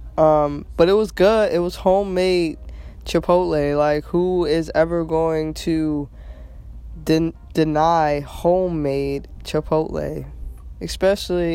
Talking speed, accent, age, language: 105 wpm, American, 20-39, English